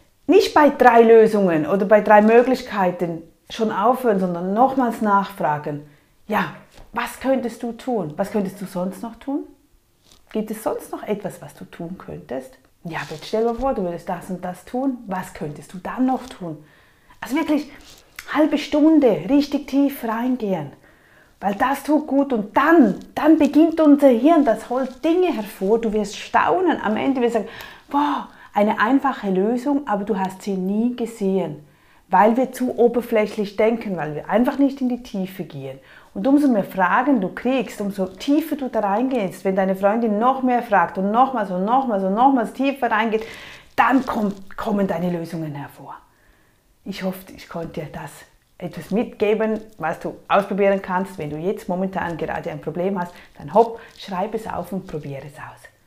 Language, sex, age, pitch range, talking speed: German, female, 30-49, 180-255 Hz, 175 wpm